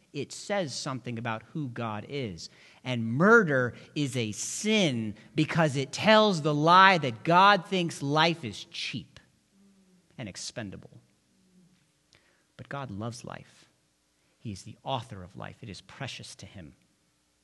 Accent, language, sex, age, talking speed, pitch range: American, English, male, 40-59, 140 wpm, 145-225 Hz